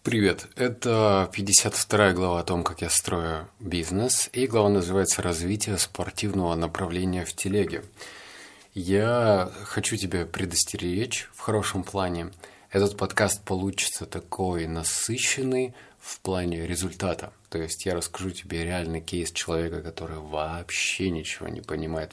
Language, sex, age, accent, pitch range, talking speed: Russian, male, 30-49, native, 85-105 Hz, 125 wpm